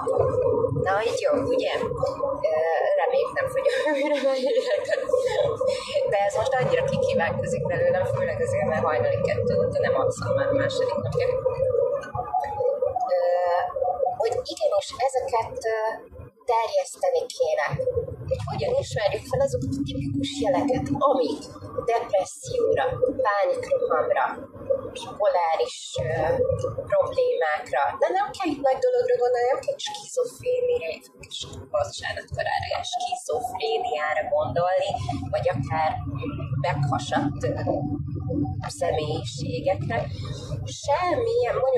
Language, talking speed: Hungarian, 95 wpm